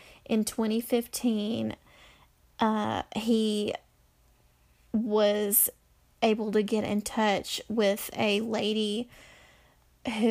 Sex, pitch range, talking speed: female, 205-225 Hz, 80 wpm